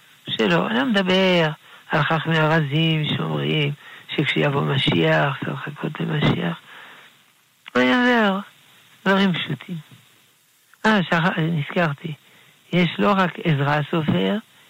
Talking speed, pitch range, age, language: 105 wpm, 135-170 Hz, 60-79, Hebrew